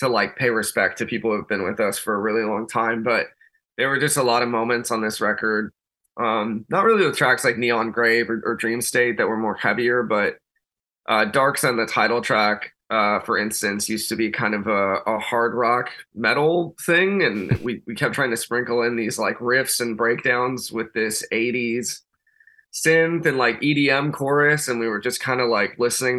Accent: American